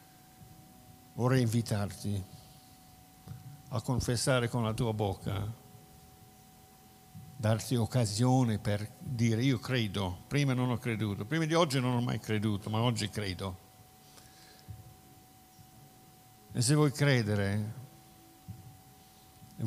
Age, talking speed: 60-79, 100 wpm